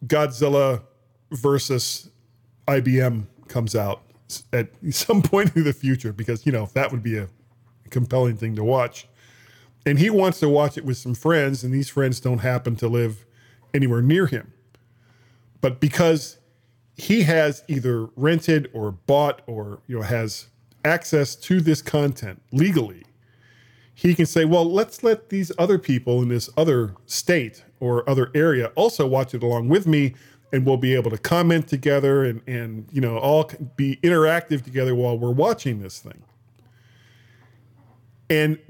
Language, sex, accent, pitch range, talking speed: English, male, American, 120-150 Hz, 155 wpm